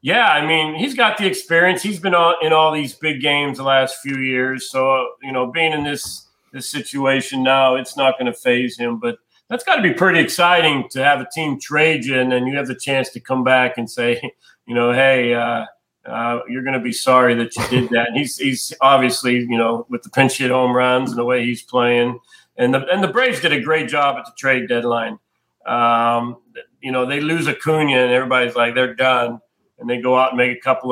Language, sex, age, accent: English, male, 40-59, American